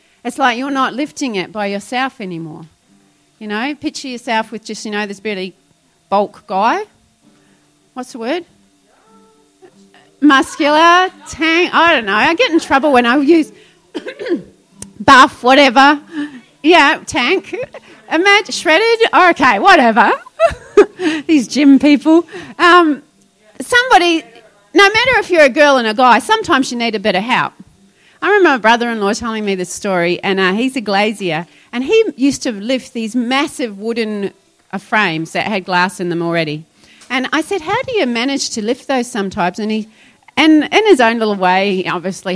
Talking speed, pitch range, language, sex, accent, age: 160 wpm, 200-310 Hz, English, female, Australian, 30-49